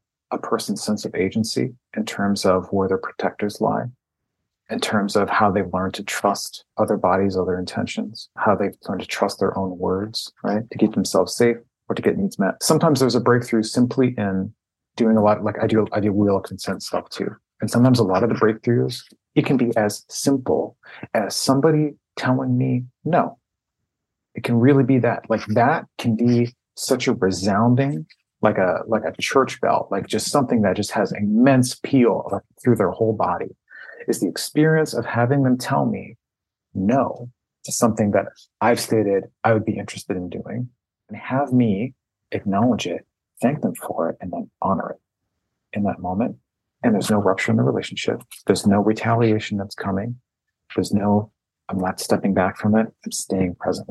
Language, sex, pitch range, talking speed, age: English, male, 100-125 Hz, 185 wpm, 30-49